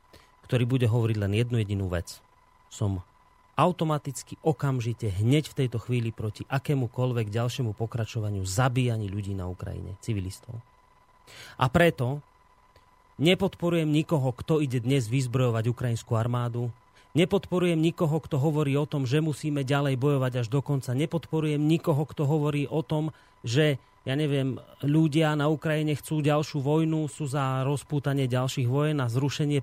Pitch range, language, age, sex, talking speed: 120-150 Hz, Slovak, 30-49, male, 140 wpm